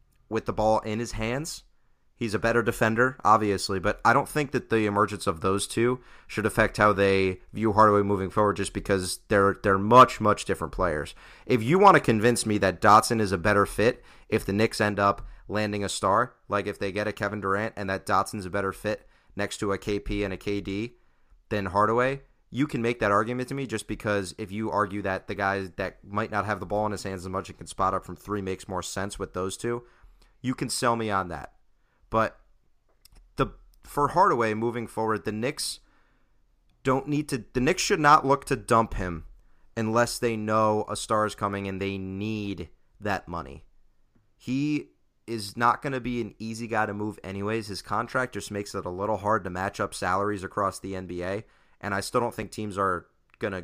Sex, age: male, 30-49